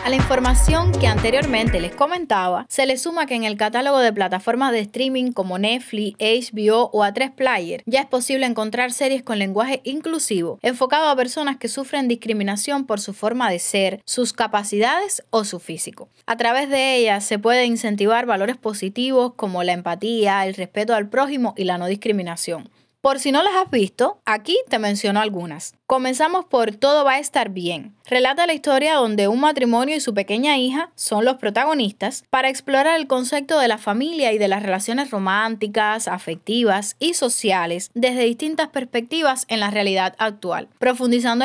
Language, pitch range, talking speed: Spanish, 205-270 Hz, 175 wpm